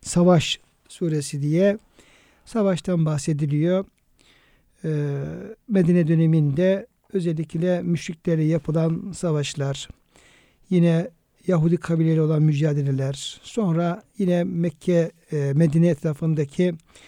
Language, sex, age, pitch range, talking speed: Turkish, male, 60-79, 150-175 Hz, 75 wpm